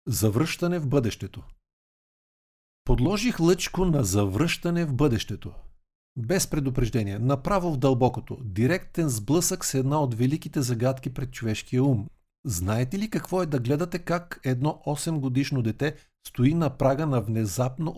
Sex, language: male, Bulgarian